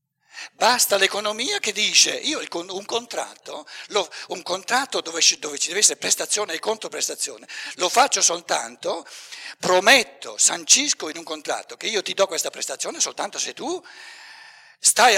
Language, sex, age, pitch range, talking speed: Italian, male, 60-79, 155-235 Hz, 135 wpm